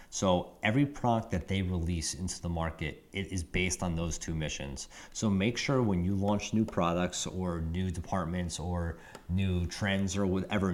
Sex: male